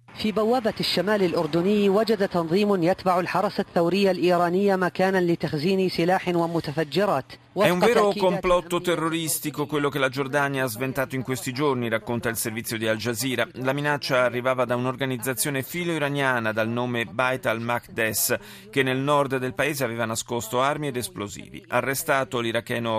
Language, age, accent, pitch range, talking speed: Italian, 40-59, native, 120-175 Hz, 110 wpm